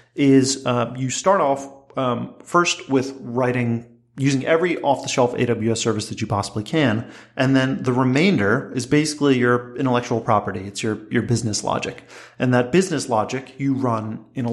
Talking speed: 165 wpm